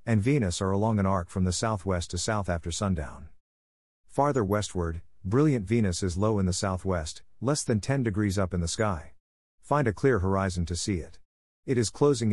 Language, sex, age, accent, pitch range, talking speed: English, male, 50-69, American, 90-115 Hz, 195 wpm